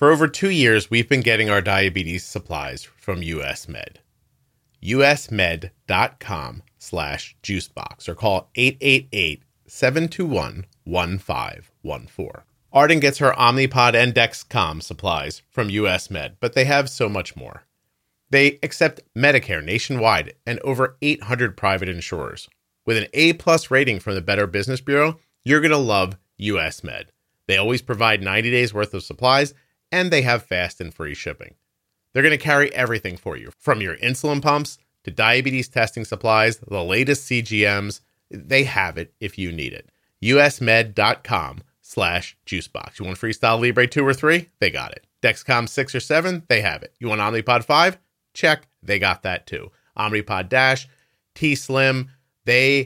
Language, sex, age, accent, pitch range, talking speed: English, male, 30-49, American, 100-135 Hz, 150 wpm